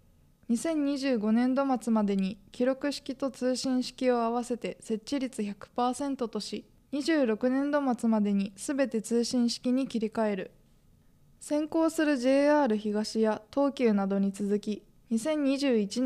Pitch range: 215-275 Hz